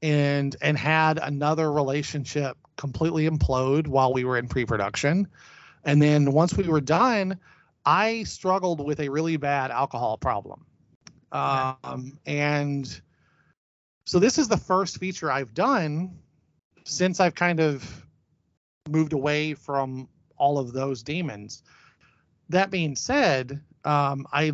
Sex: male